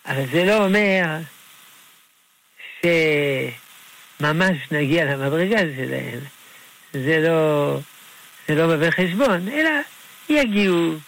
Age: 60-79